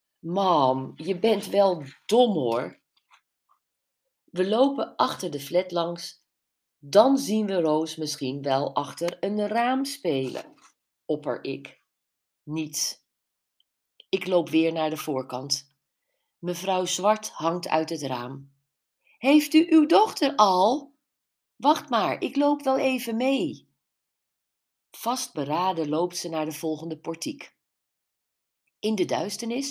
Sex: female